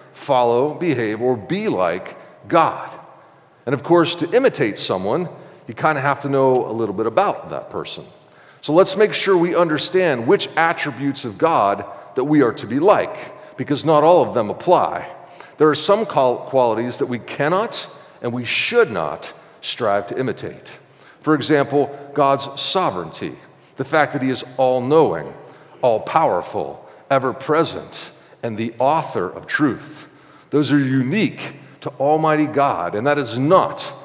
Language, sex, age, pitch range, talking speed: English, male, 50-69, 130-170 Hz, 155 wpm